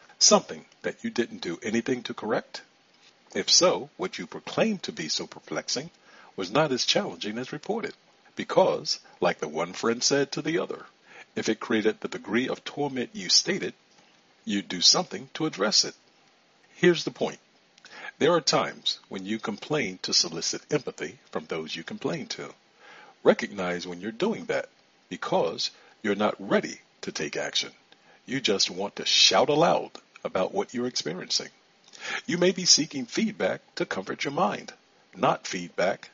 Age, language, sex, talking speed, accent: 50-69, English, male, 160 wpm, American